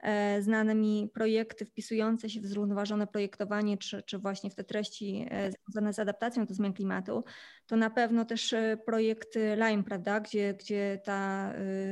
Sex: female